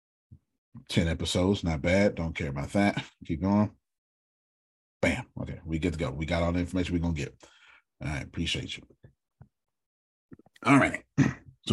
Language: English